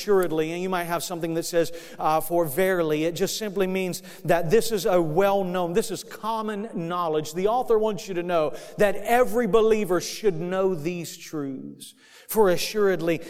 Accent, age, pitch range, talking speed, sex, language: American, 40-59, 155-200 Hz, 175 wpm, male, English